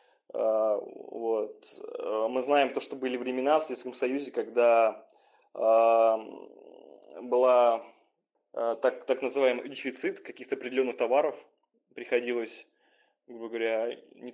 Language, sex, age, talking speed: Russian, male, 20-39, 90 wpm